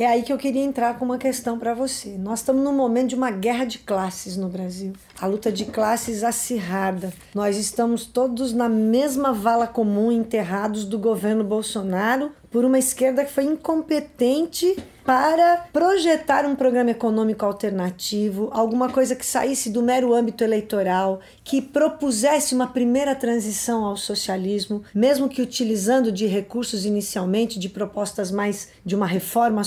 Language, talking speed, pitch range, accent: Portuguese, 155 wpm, 205-255 Hz, Brazilian